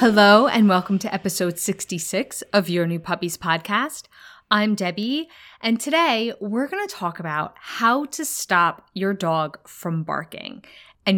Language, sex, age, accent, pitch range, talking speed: English, female, 20-39, American, 180-240 Hz, 150 wpm